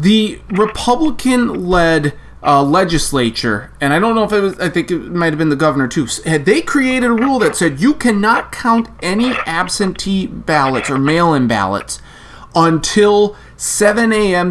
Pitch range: 150-230 Hz